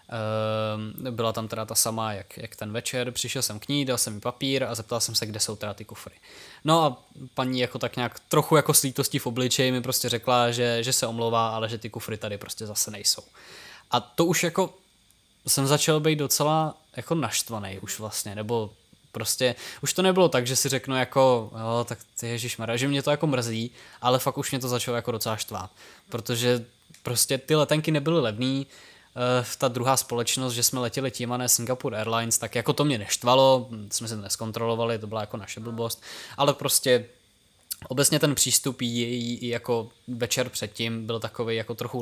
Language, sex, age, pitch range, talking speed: Czech, male, 20-39, 115-130 Hz, 190 wpm